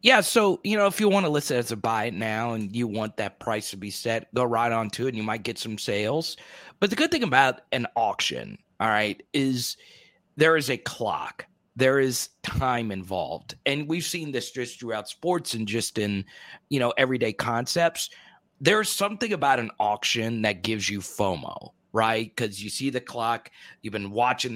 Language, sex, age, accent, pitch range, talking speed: English, male, 30-49, American, 110-150 Hz, 205 wpm